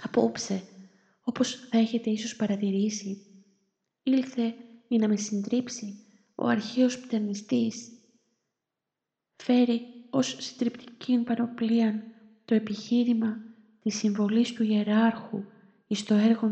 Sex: female